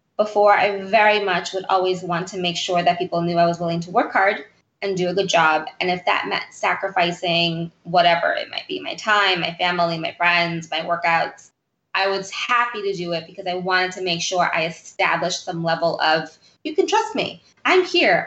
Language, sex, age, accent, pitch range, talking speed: English, female, 20-39, American, 175-215 Hz, 210 wpm